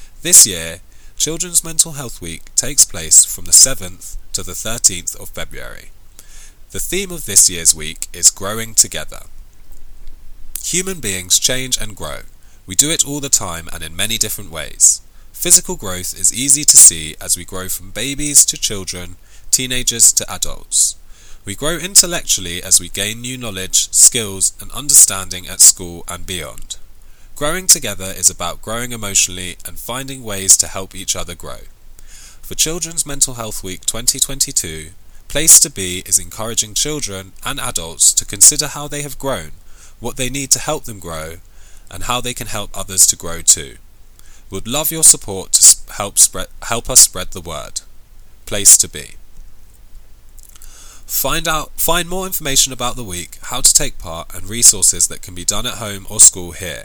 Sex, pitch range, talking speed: male, 90-125 Hz, 170 wpm